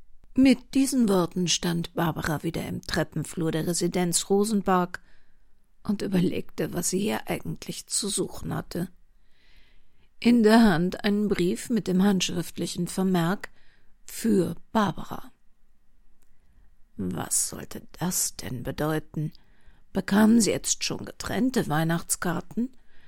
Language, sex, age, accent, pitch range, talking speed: German, female, 50-69, German, 175-230 Hz, 110 wpm